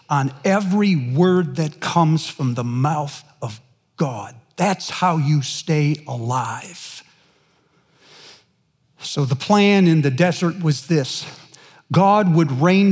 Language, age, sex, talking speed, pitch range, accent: English, 50-69, male, 120 wpm, 145-200 Hz, American